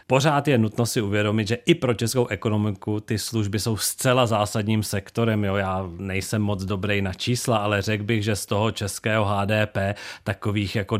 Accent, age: native, 40-59